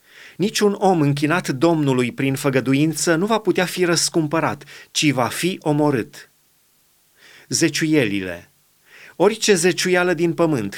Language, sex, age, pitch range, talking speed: Romanian, male, 30-49, 140-180 Hz, 110 wpm